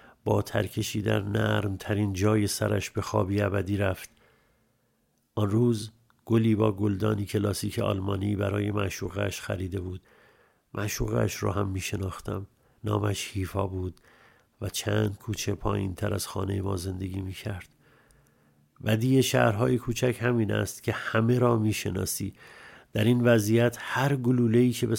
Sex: male